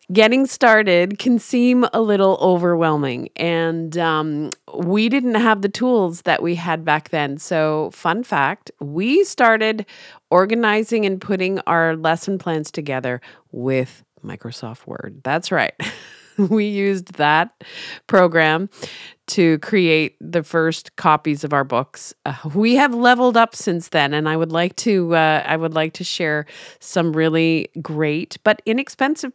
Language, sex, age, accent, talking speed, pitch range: English, female, 30-49, American, 145 wpm, 155-205 Hz